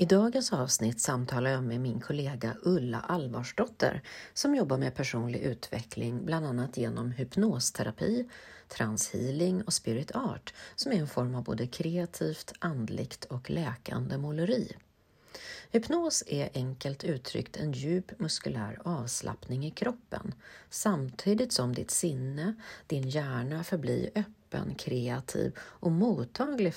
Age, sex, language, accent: 40-59, female, Swedish, native